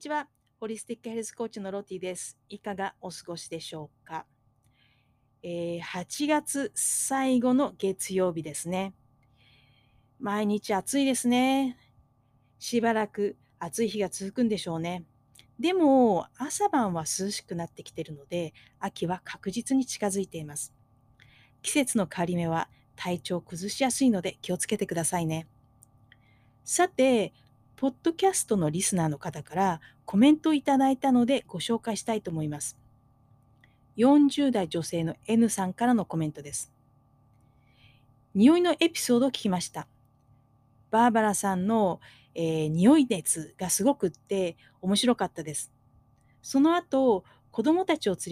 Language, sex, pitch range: Japanese, female, 145-230 Hz